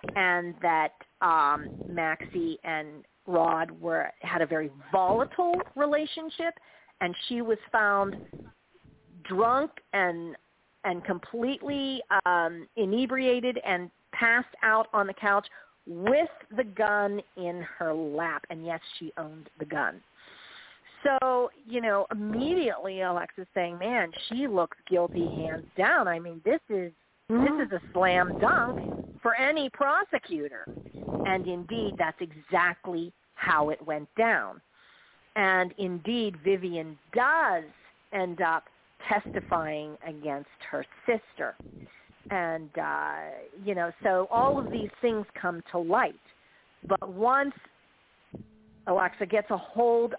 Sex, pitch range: female, 165-225 Hz